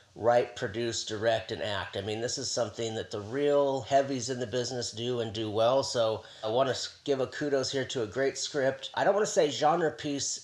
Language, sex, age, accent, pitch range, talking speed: English, male, 40-59, American, 115-135 Hz, 230 wpm